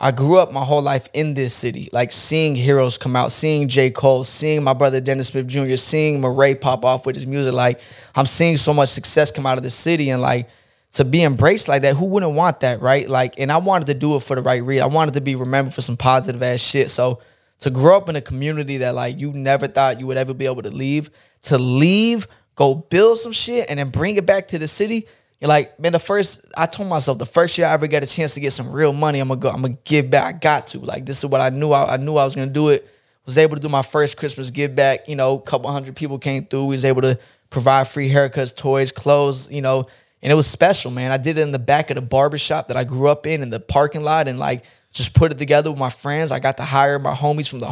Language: English